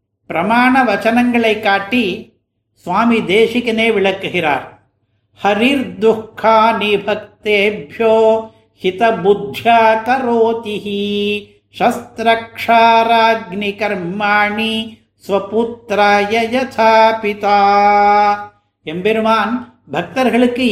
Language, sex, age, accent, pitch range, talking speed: Tamil, male, 50-69, native, 195-230 Hz, 30 wpm